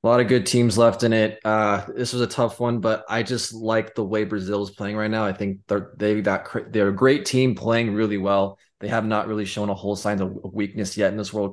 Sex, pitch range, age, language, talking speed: male, 100-120 Hz, 20-39, English, 255 wpm